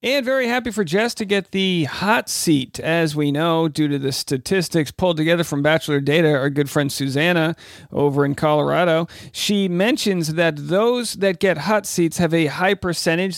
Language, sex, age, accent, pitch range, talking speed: English, male, 40-59, American, 145-190 Hz, 185 wpm